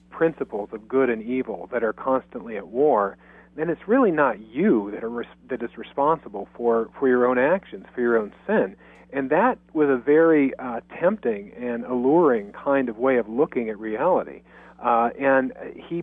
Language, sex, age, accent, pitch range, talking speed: English, male, 40-59, American, 115-140 Hz, 175 wpm